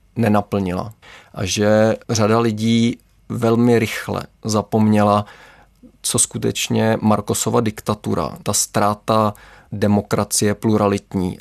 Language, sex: Czech, male